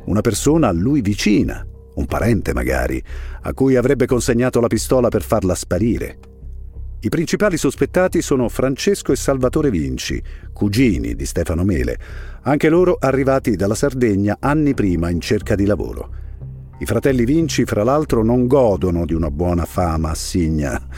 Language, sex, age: Italian, male, 50-69